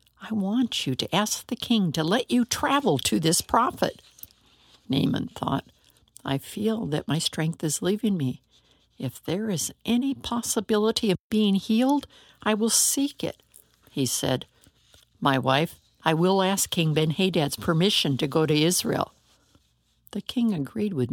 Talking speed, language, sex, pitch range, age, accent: 155 wpm, English, female, 150-225 Hz, 60-79, American